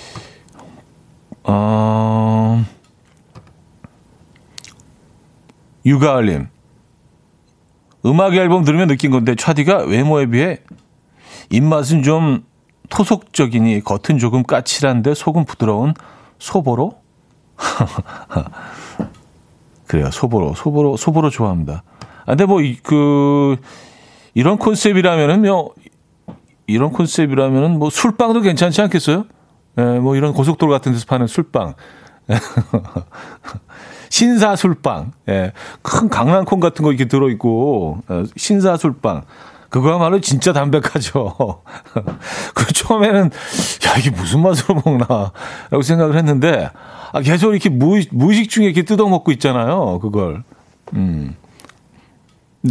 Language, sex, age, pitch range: Korean, male, 40-59, 120-180 Hz